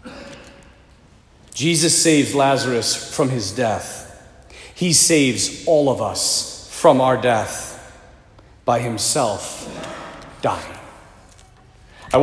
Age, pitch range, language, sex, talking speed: 40-59, 125-165 Hz, English, male, 90 wpm